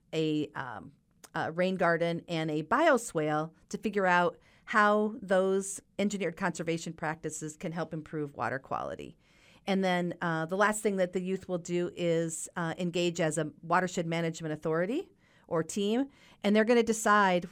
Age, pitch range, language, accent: 40-59, 160-190 Hz, English, American